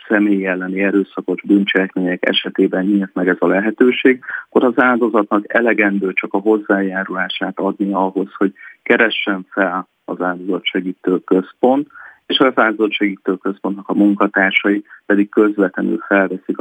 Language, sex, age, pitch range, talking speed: Hungarian, male, 30-49, 95-105 Hz, 125 wpm